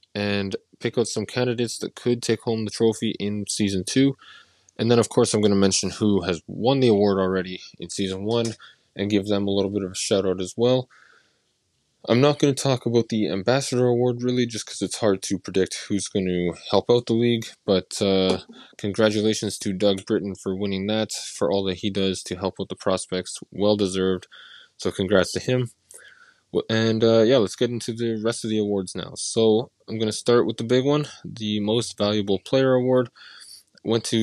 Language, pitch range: English, 100-120 Hz